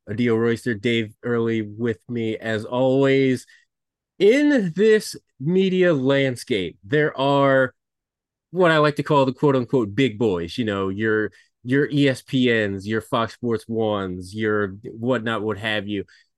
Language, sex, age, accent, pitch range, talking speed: English, male, 30-49, American, 115-155 Hz, 140 wpm